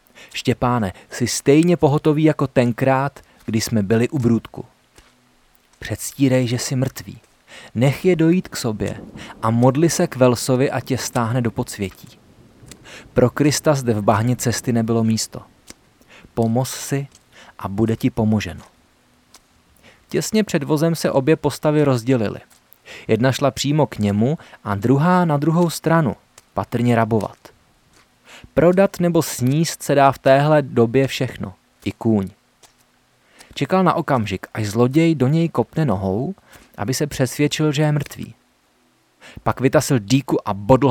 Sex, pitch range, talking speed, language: male, 115-150 Hz, 140 wpm, Czech